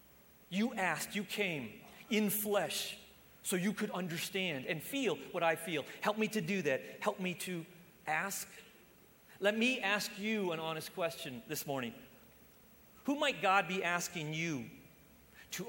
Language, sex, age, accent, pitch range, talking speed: English, male, 40-59, American, 185-250 Hz, 155 wpm